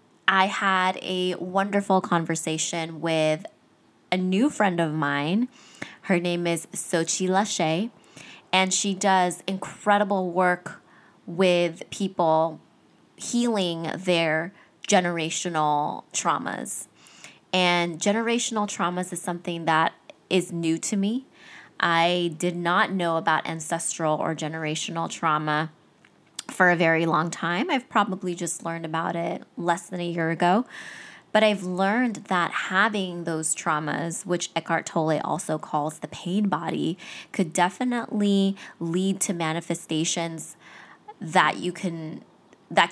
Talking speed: 115 wpm